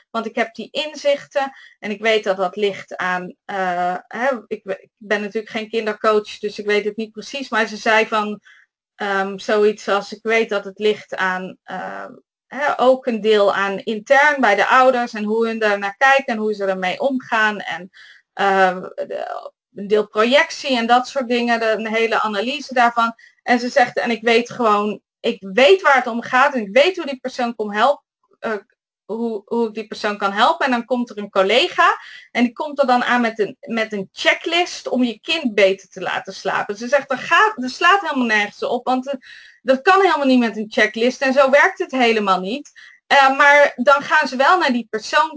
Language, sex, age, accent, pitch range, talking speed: Dutch, female, 20-39, Dutch, 210-270 Hz, 205 wpm